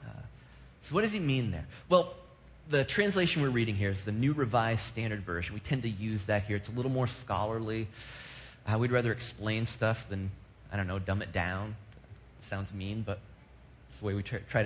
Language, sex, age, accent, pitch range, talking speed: English, male, 30-49, American, 100-140 Hz, 200 wpm